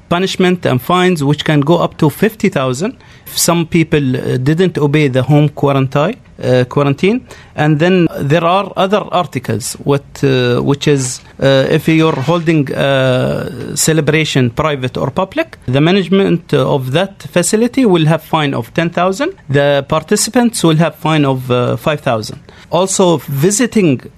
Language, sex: Malayalam, male